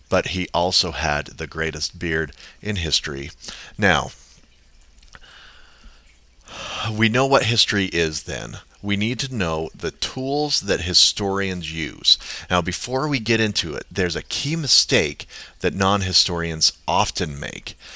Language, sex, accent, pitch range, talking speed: English, male, American, 75-100 Hz, 130 wpm